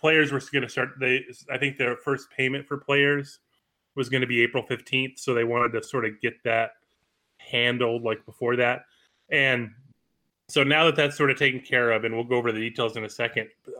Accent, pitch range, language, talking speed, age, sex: American, 120-145 Hz, English, 220 wpm, 30-49, male